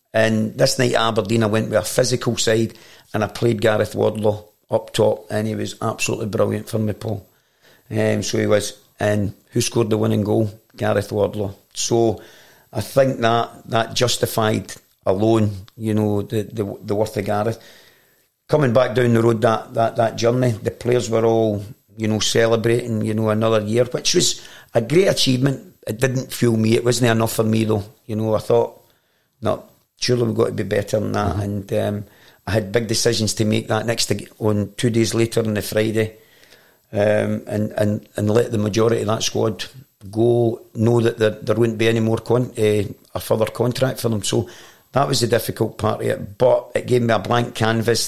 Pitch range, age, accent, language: 105-120 Hz, 40-59, British, English